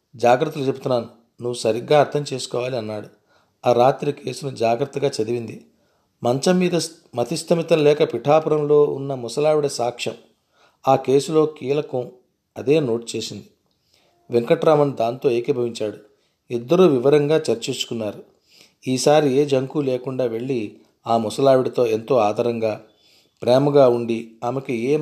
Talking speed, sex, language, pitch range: 110 wpm, male, Telugu, 120-145 Hz